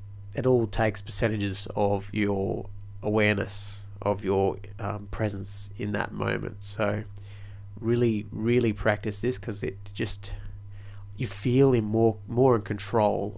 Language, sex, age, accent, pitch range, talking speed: English, male, 30-49, Australian, 100-120 Hz, 130 wpm